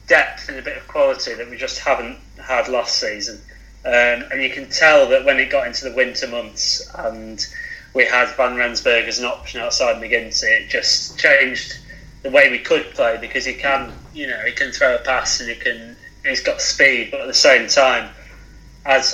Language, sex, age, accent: English, male, 30-49, British